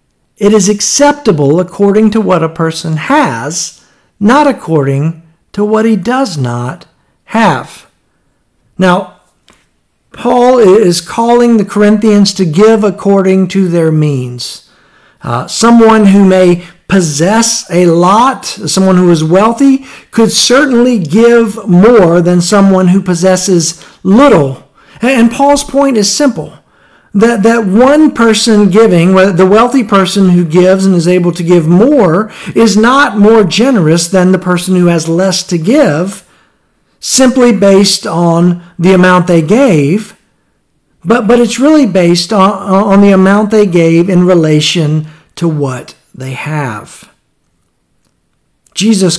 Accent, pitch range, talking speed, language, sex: American, 170-220 Hz, 130 wpm, English, male